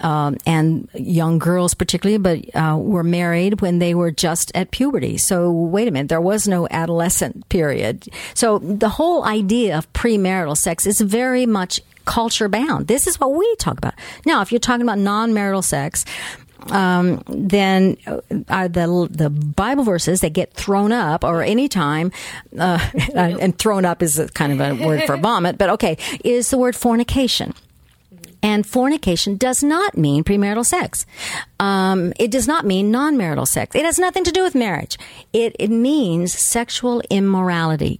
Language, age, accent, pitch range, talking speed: English, 50-69, American, 175-235 Hz, 165 wpm